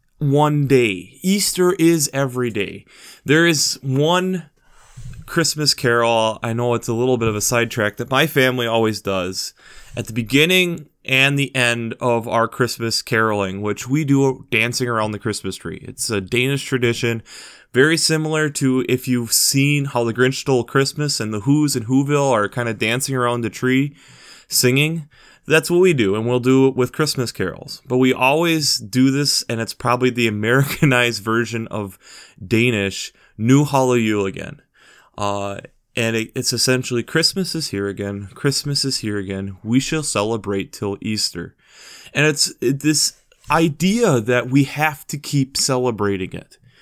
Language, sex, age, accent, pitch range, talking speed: English, male, 20-39, American, 115-150 Hz, 165 wpm